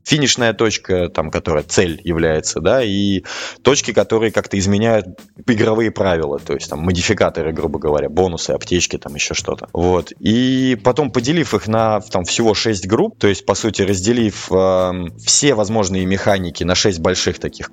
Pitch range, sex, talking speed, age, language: 95-120 Hz, male, 165 wpm, 20-39, Russian